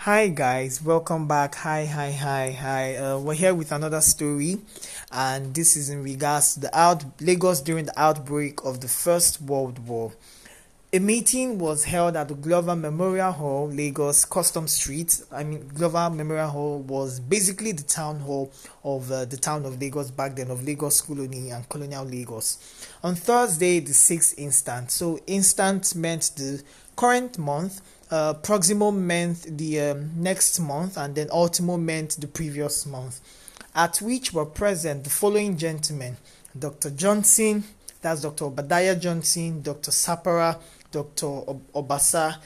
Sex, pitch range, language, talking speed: male, 140-175 Hz, English, 155 wpm